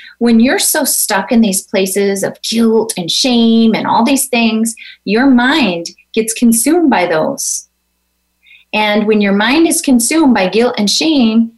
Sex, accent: female, American